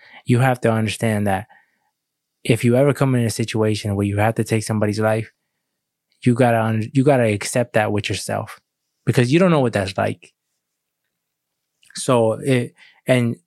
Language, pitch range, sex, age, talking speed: English, 105-130 Hz, male, 20-39, 170 wpm